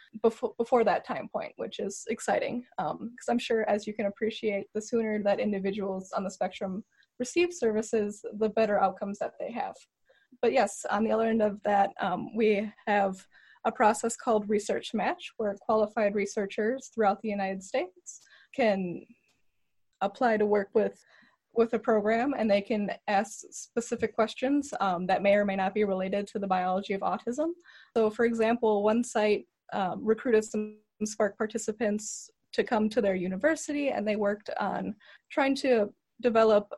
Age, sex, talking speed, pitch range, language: 10-29, female, 170 wpm, 205-240 Hz, English